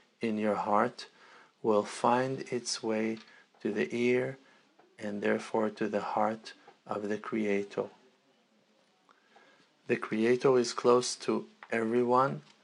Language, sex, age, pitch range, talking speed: English, male, 50-69, 110-120 Hz, 115 wpm